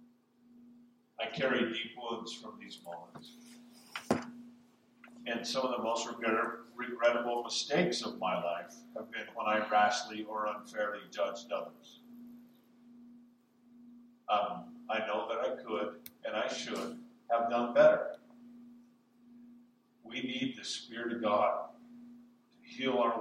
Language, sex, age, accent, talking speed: English, male, 50-69, American, 120 wpm